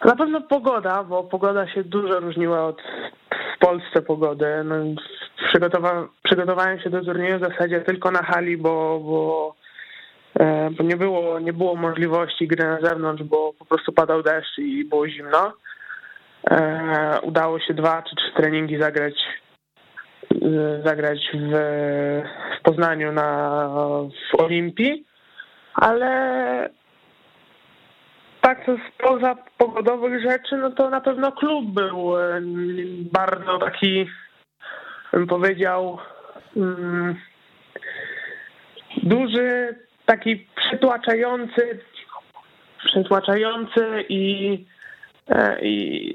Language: Polish